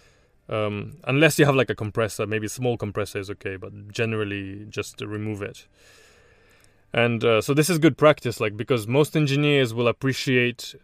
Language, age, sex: English, 20-39, male